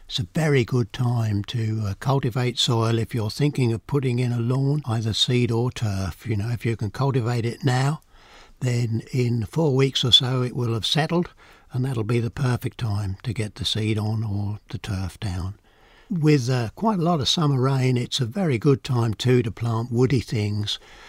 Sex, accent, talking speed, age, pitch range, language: male, British, 205 wpm, 60-79, 110-140 Hz, English